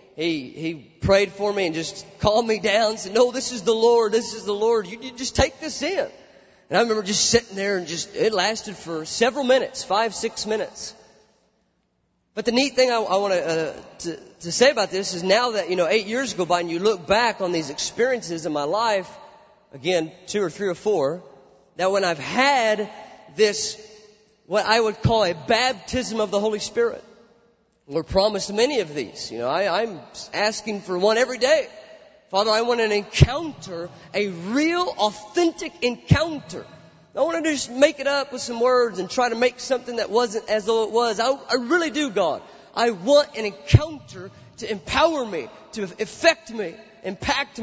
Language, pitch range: English, 195-250 Hz